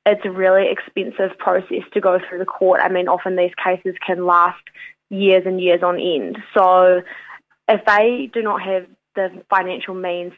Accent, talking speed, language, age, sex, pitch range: Australian, 180 wpm, English, 20-39, female, 180-215 Hz